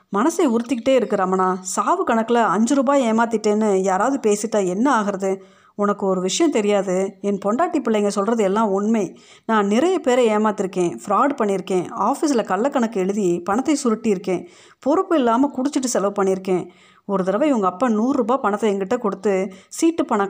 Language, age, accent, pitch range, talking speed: Tamil, 30-49, native, 195-245 Hz, 145 wpm